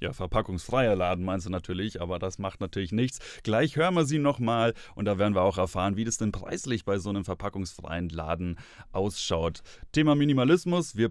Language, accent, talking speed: German, German, 190 wpm